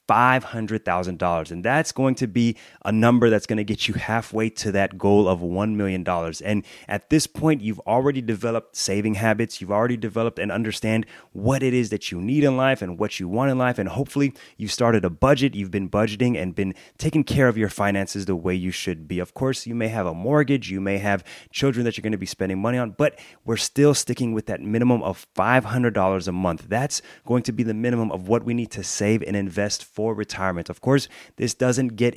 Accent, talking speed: American, 225 wpm